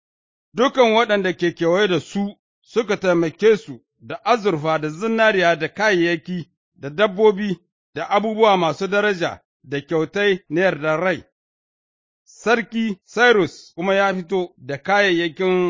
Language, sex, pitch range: English, male, 160-200 Hz